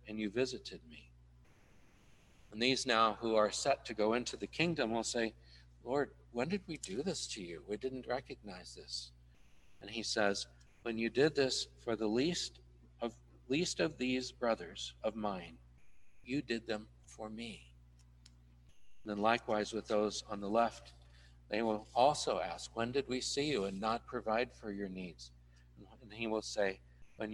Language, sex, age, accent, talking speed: English, male, 60-79, American, 175 wpm